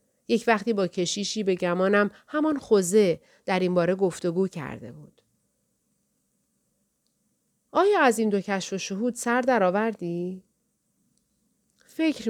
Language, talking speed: Persian, 120 wpm